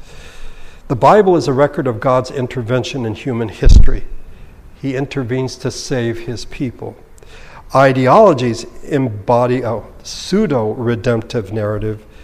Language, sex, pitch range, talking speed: English, male, 115-150 Hz, 110 wpm